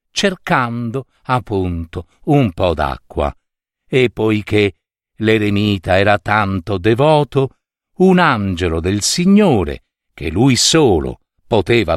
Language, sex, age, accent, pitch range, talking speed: Italian, male, 50-69, native, 100-155 Hz, 95 wpm